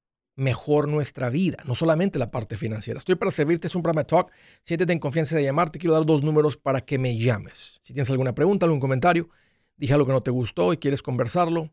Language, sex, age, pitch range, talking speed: Spanish, male, 50-69, 130-160 Hz, 225 wpm